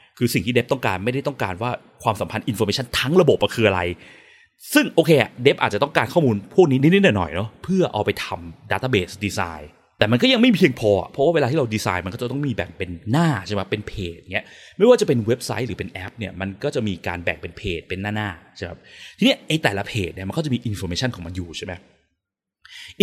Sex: male